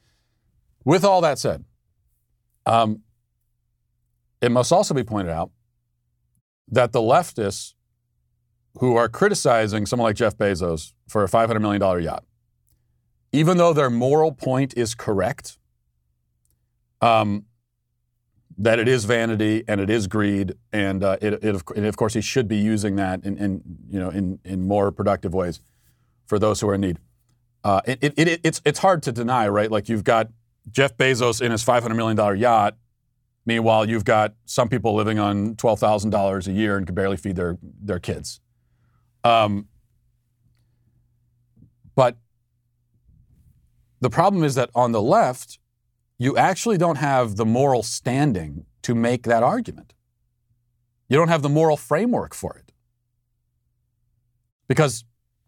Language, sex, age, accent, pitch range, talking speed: English, male, 40-59, American, 105-120 Hz, 145 wpm